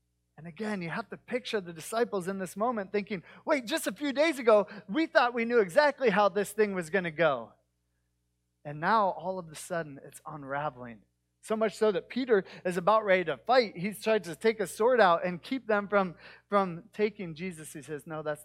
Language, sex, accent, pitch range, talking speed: English, male, American, 155-215 Hz, 215 wpm